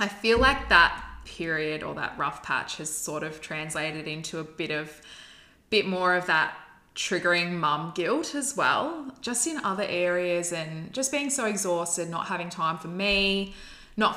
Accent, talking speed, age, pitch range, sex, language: Australian, 175 wpm, 20-39, 160-205 Hz, female, English